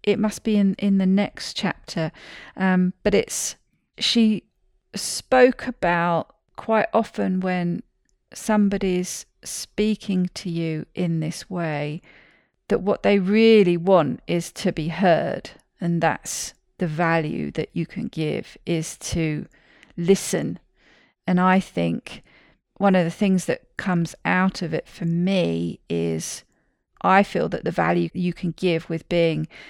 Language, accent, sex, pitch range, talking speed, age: English, British, female, 170-215 Hz, 140 wpm, 40-59